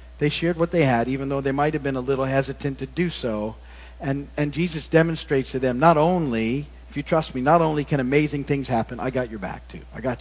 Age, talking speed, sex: 50-69, 245 wpm, male